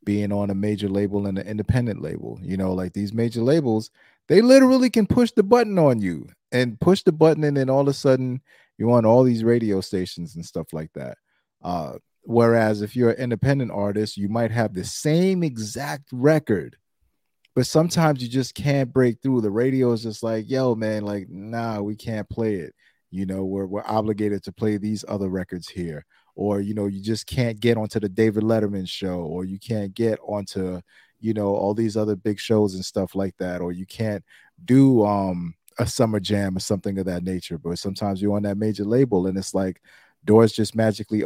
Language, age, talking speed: English, 30-49, 205 wpm